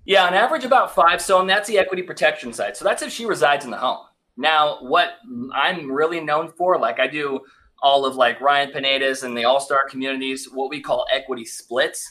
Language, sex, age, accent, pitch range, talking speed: English, male, 20-39, American, 135-175 Hz, 220 wpm